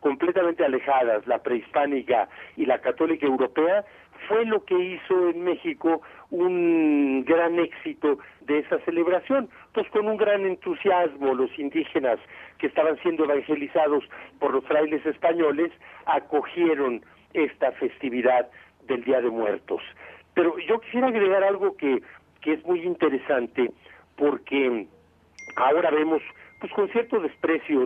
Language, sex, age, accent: Spanish, male, 50-69, Mexican